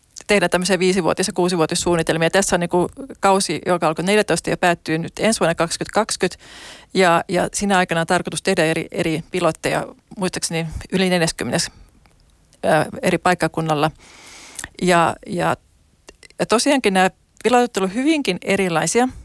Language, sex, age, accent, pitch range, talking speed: Finnish, female, 30-49, native, 165-190 Hz, 130 wpm